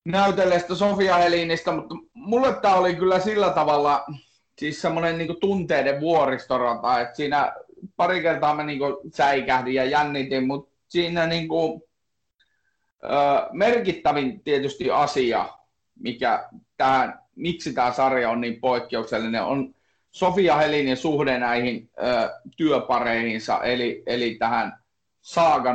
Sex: male